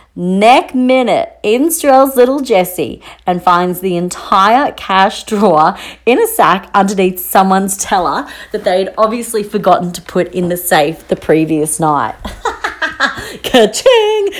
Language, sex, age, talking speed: English, female, 40-59, 125 wpm